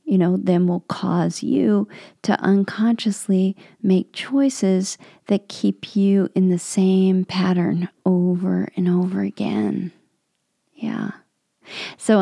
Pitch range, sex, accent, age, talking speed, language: 175-200 Hz, female, American, 40-59, 115 wpm, English